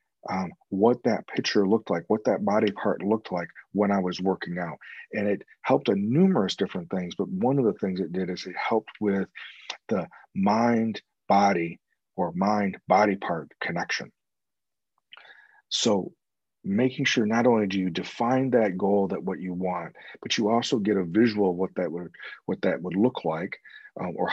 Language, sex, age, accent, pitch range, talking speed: English, male, 40-59, American, 95-115 Hz, 180 wpm